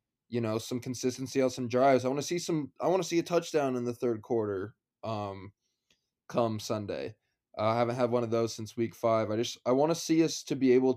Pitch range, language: 110-130 Hz, English